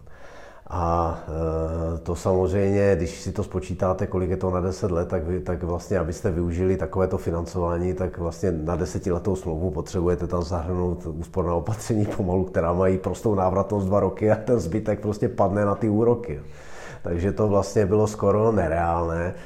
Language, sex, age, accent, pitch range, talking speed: Czech, male, 40-59, native, 85-100 Hz, 160 wpm